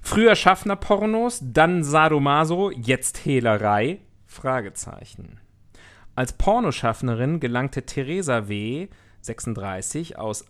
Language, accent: German, German